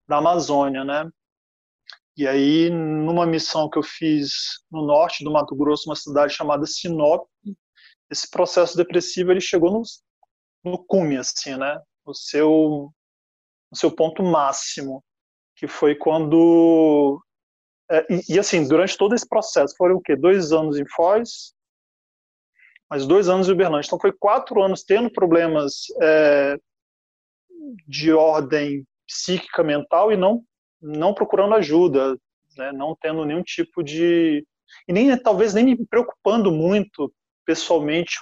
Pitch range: 145-180 Hz